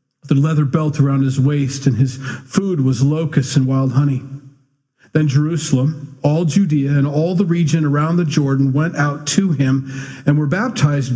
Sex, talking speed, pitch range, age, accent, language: male, 170 wpm, 135-155 Hz, 40-59, American, English